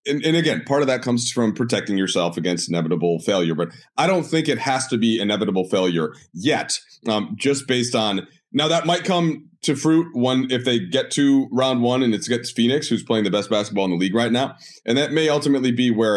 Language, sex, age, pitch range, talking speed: English, male, 30-49, 100-140 Hz, 225 wpm